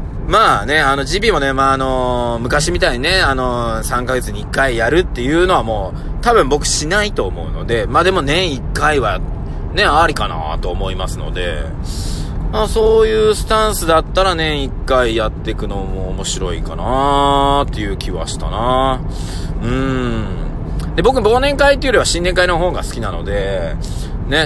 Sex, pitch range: male, 90-140 Hz